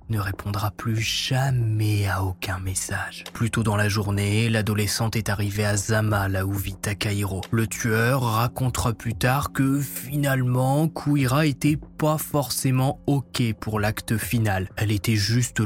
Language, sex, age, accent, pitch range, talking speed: French, male, 20-39, French, 100-115 Hz, 150 wpm